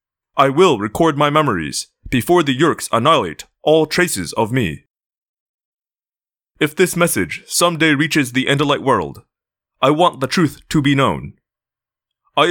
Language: English